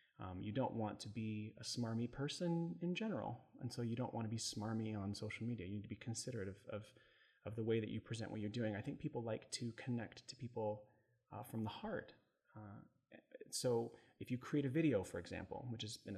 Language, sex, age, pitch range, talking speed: English, male, 30-49, 105-130 Hz, 230 wpm